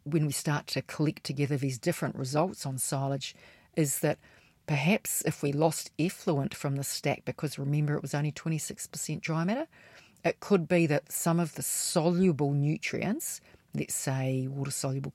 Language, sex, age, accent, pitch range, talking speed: English, female, 40-59, Australian, 140-165 Hz, 160 wpm